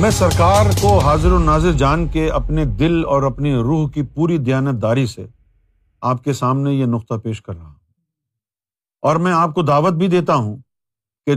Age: 50-69